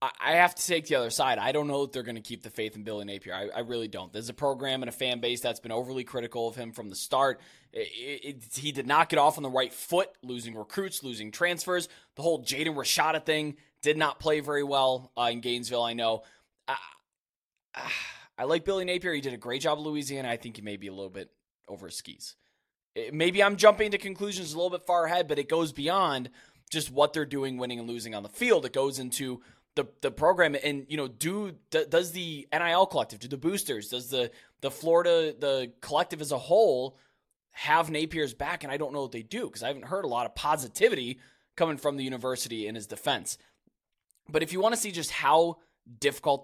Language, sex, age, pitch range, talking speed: English, male, 20-39, 125-165 Hz, 235 wpm